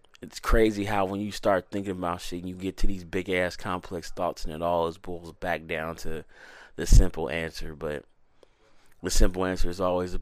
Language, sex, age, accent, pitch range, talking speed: English, male, 20-39, American, 85-95 Hz, 205 wpm